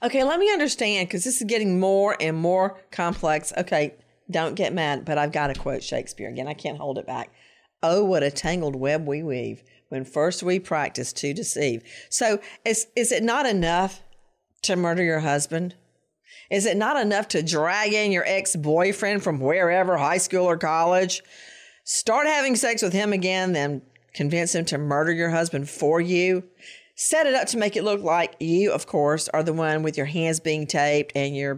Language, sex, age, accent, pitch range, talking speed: English, female, 50-69, American, 160-255 Hz, 195 wpm